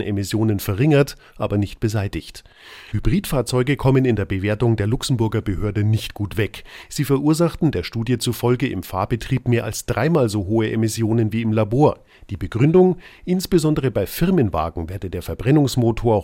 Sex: male